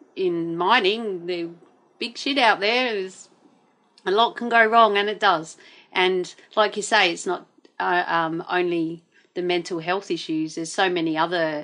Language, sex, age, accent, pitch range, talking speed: English, female, 40-59, Australian, 170-215 Hz, 170 wpm